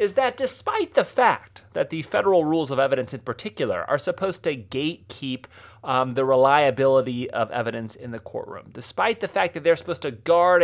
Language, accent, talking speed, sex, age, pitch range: English, American, 185 wpm, male, 30-49, 125-190 Hz